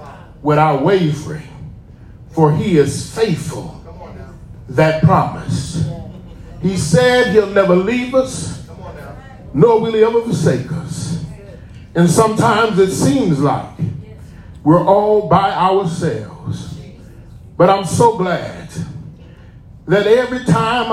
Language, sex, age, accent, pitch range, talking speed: English, male, 40-59, American, 180-290 Hz, 105 wpm